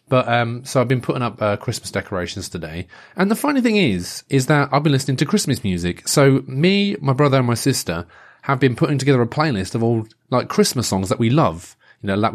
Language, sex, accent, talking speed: English, male, British, 235 wpm